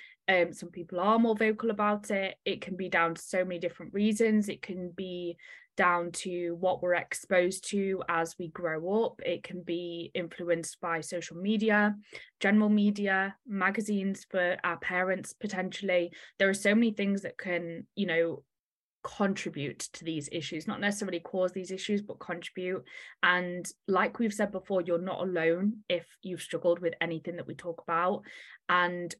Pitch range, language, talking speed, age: 170-195 Hz, English, 170 wpm, 20-39